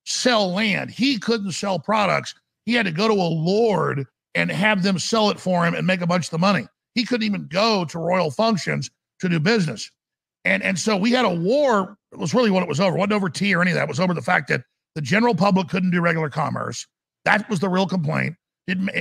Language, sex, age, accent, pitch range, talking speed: English, male, 50-69, American, 180-230 Hz, 245 wpm